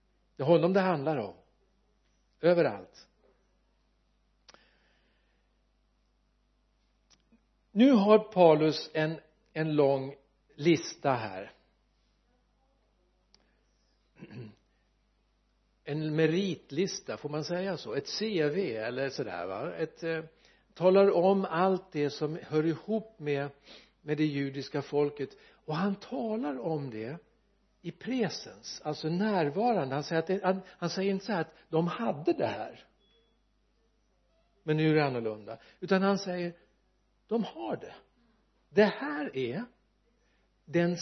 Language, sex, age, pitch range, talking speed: Swedish, male, 60-79, 155-200 Hz, 115 wpm